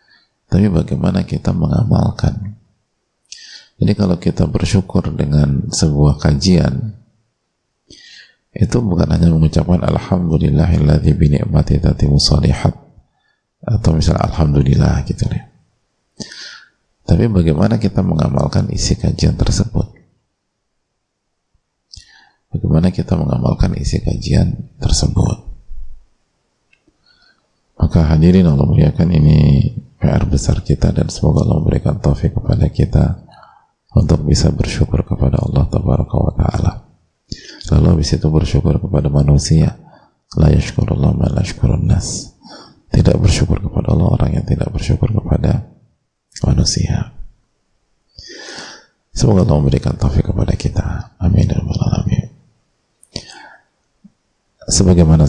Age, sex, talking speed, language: 40-59, male, 95 wpm, Indonesian